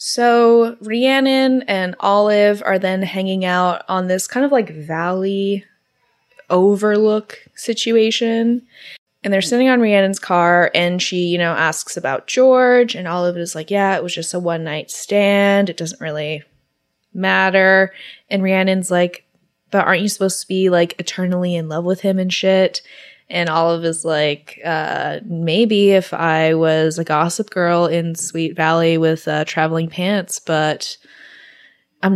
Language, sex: English, female